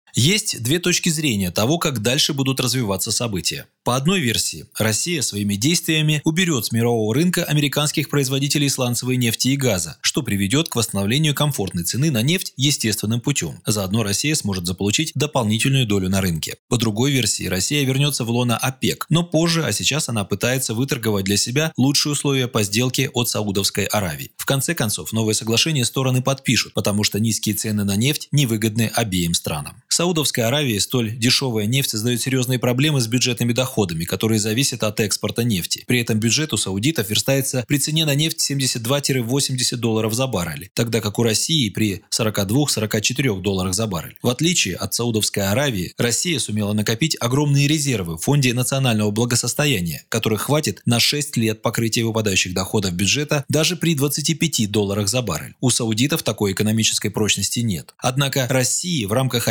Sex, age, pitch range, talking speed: male, 20-39, 110-140 Hz, 160 wpm